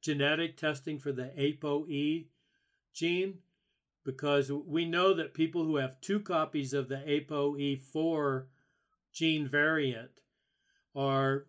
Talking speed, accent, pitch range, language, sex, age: 110 wpm, American, 135-160 Hz, English, male, 40-59